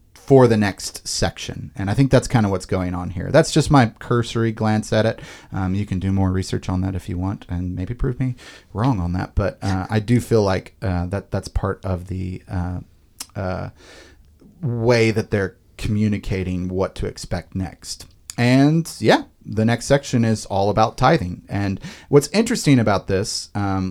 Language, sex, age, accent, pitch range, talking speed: English, male, 30-49, American, 95-120 Hz, 190 wpm